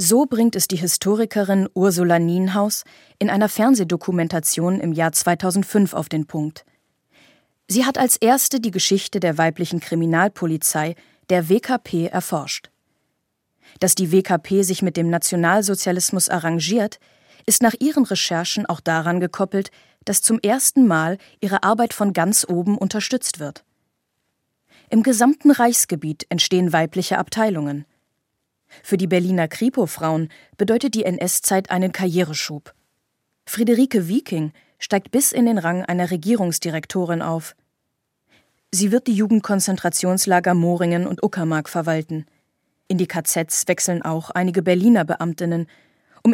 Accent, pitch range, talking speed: German, 170-215 Hz, 125 wpm